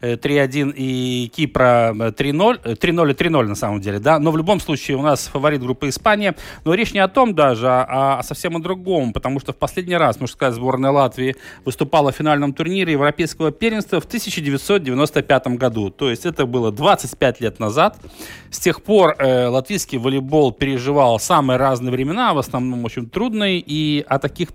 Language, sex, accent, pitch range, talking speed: Russian, male, native, 125-160 Hz, 180 wpm